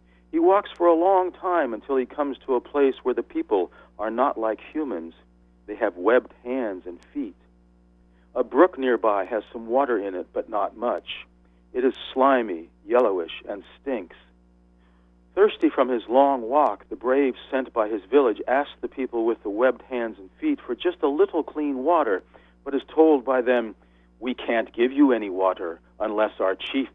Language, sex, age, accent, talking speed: English, male, 40-59, American, 185 wpm